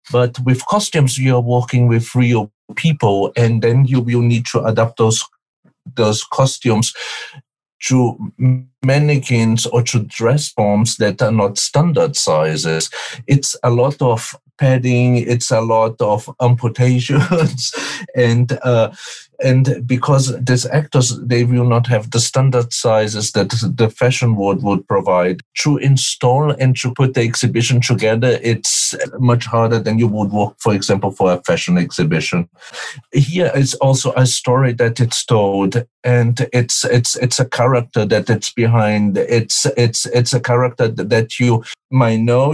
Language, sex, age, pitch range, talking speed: English, male, 50-69, 115-130 Hz, 150 wpm